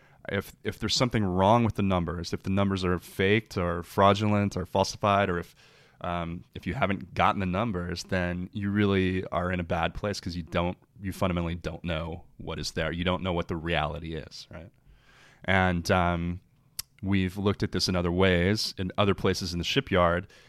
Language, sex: English, male